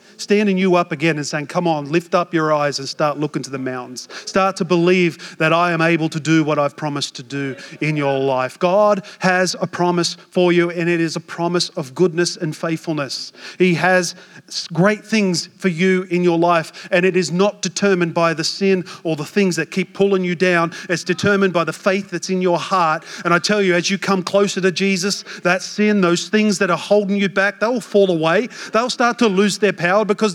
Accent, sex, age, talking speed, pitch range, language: Australian, male, 40-59, 225 wpm, 175-220 Hz, English